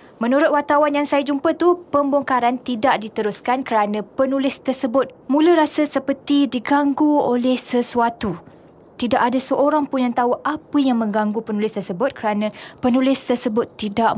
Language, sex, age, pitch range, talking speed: Malay, female, 20-39, 200-270 Hz, 140 wpm